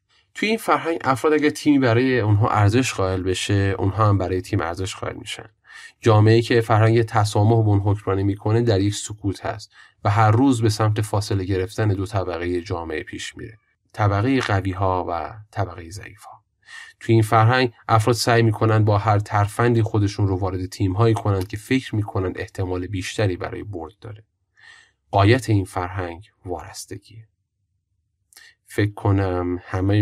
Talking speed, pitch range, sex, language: 150 wpm, 95-115 Hz, male, Persian